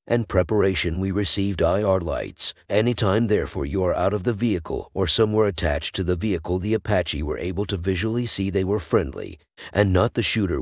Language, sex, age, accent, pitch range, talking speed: English, male, 50-69, American, 95-110 Hz, 190 wpm